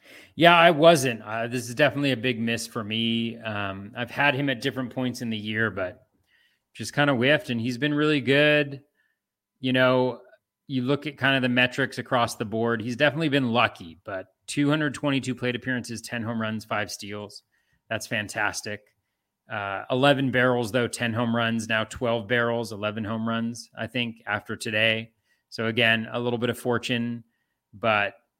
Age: 30-49